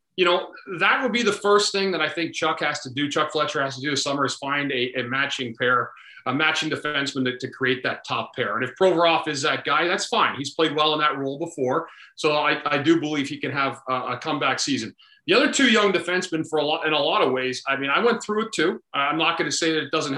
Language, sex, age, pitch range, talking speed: English, male, 40-59, 140-180 Hz, 275 wpm